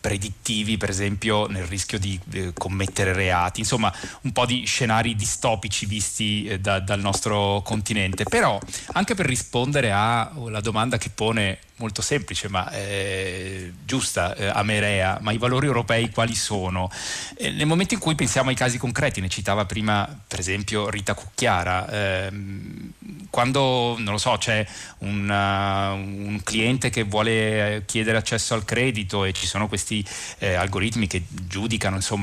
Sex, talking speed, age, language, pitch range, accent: male, 150 wpm, 30-49, Italian, 100-115 Hz, native